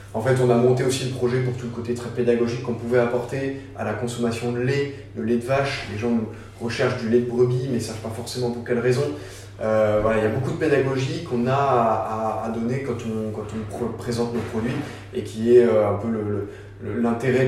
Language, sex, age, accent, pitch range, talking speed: French, male, 20-39, French, 100-120 Hz, 245 wpm